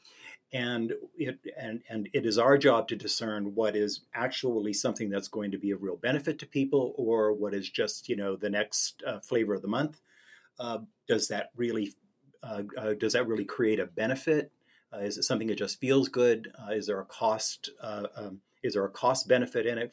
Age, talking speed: 50-69, 210 wpm